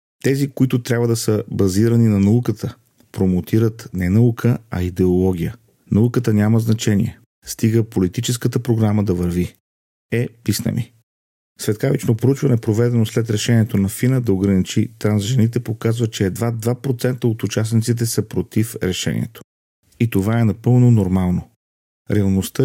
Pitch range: 100-120 Hz